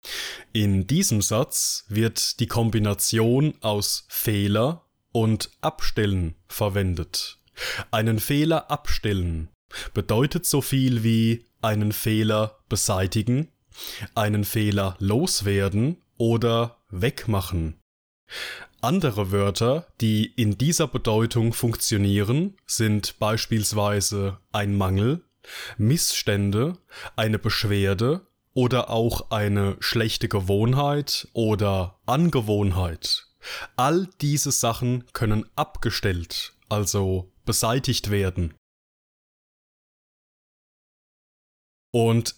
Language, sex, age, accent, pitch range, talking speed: German, male, 20-39, German, 100-120 Hz, 80 wpm